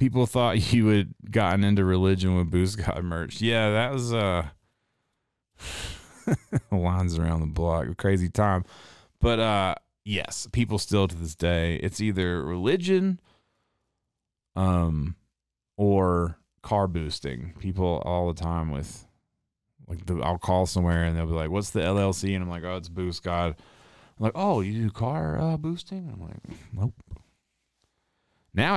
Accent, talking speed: American, 150 wpm